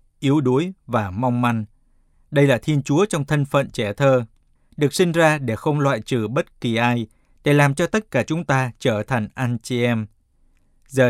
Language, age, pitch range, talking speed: Vietnamese, 20-39, 120-155 Hz, 200 wpm